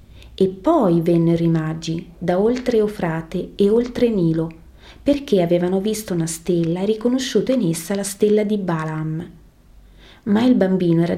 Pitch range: 170-210 Hz